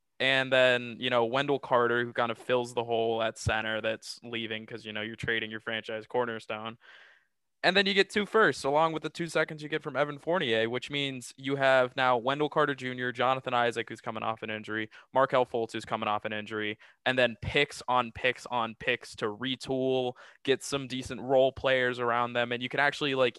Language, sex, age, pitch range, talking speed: English, male, 20-39, 120-150 Hz, 215 wpm